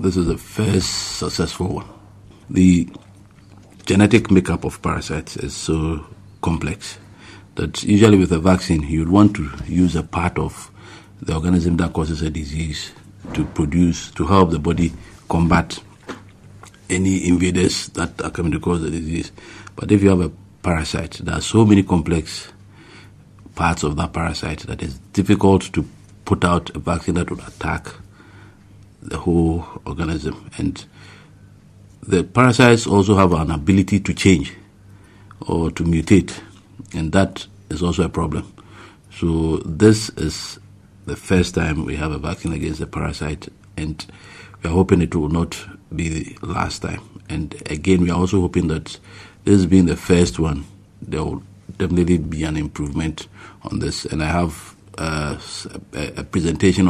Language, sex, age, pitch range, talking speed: English, male, 50-69, 80-100 Hz, 155 wpm